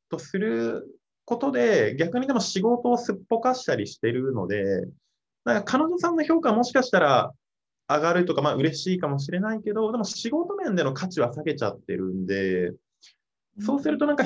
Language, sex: Japanese, male